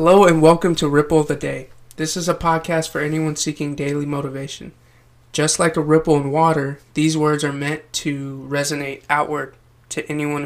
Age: 20-39